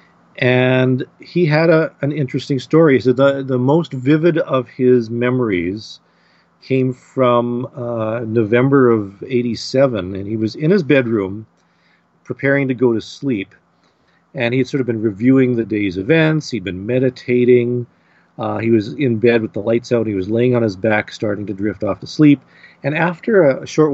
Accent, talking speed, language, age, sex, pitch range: American, 180 wpm, English, 40-59, male, 115-140 Hz